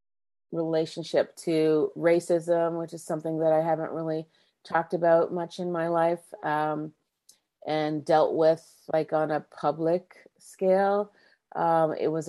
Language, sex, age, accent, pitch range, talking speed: English, female, 30-49, American, 155-170 Hz, 135 wpm